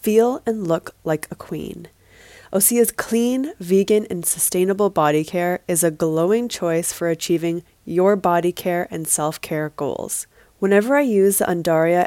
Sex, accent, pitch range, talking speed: female, American, 170-205 Hz, 150 wpm